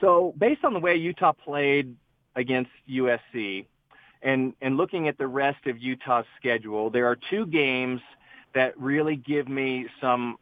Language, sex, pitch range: English, male, 125-150 Hz